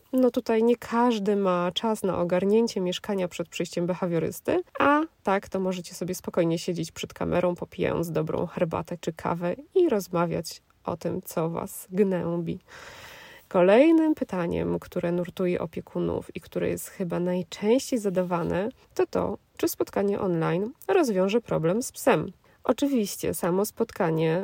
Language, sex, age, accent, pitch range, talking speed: Polish, female, 20-39, native, 175-230 Hz, 140 wpm